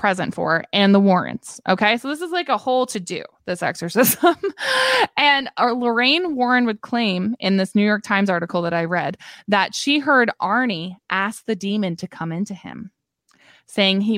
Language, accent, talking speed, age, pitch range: English, American, 185 wpm, 20-39, 180-245 Hz